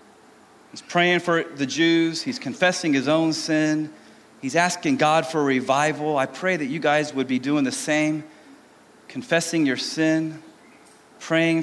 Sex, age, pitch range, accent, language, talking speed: male, 30-49, 145-170 Hz, American, English, 155 wpm